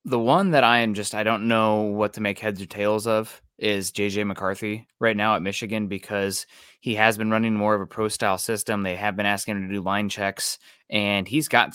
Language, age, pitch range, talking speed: English, 20-39, 100-115 Hz, 235 wpm